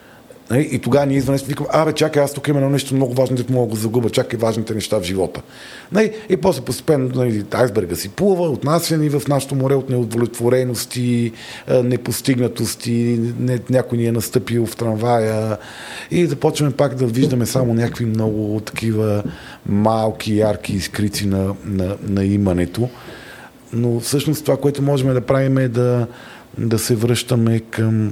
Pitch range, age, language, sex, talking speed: 105-130 Hz, 40-59, Bulgarian, male, 155 wpm